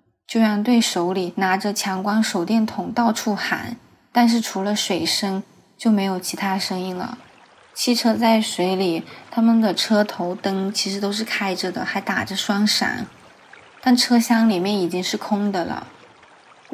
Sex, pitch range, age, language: female, 195-235 Hz, 20-39, Chinese